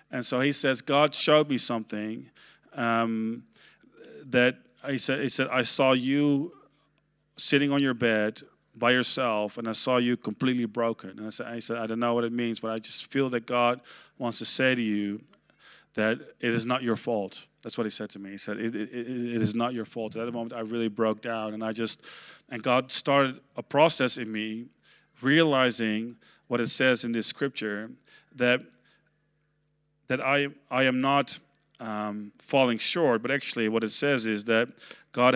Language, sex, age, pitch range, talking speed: Dutch, male, 40-59, 115-135 Hz, 195 wpm